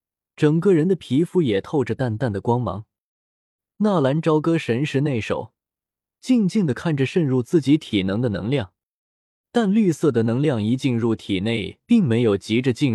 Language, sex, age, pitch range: Chinese, male, 20-39, 105-160 Hz